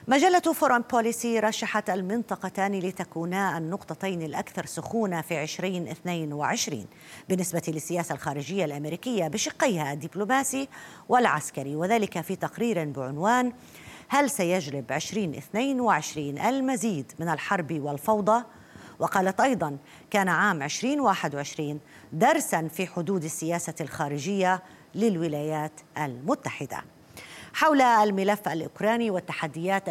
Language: Arabic